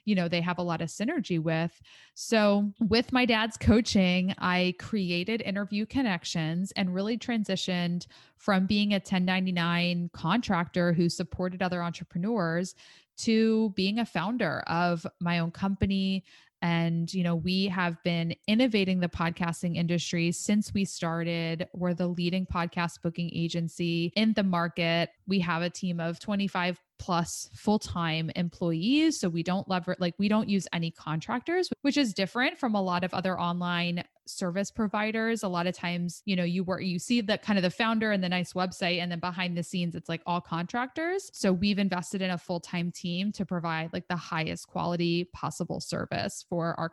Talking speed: 175 wpm